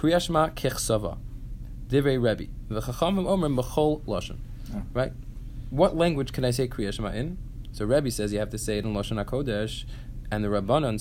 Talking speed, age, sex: 125 wpm, 20-39, male